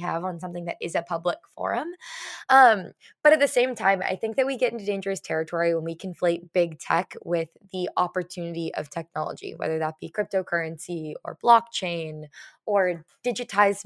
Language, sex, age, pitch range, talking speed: English, female, 10-29, 175-225 Hz, 175 wpm